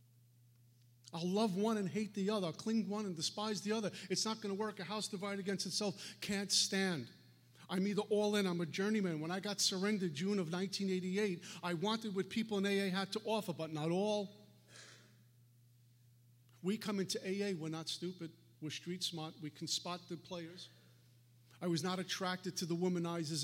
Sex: male